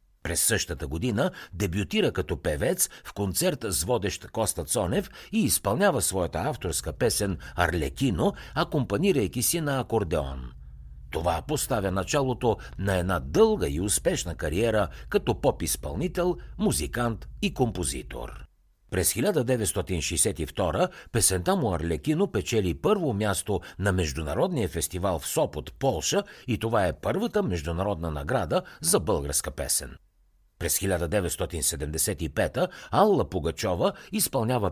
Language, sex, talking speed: Bulgarian, male, 110 wpm